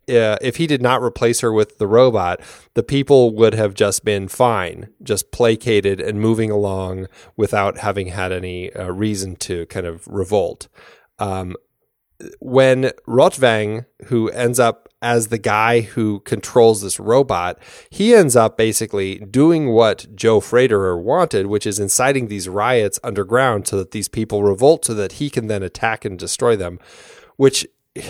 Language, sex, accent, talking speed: English, male, American, 160 wpm